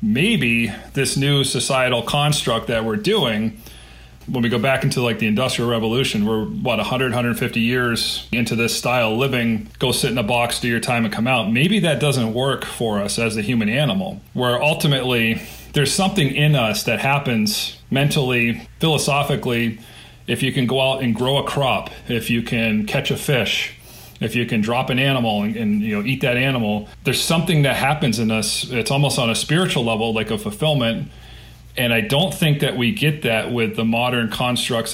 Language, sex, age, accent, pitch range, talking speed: English, male, 40-59, American, 115-135 Hz, 195 wpm